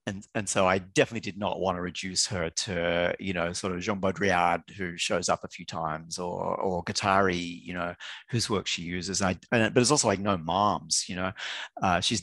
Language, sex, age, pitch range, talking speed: English, male, 40-59, 90-110 Hz, 220 wpm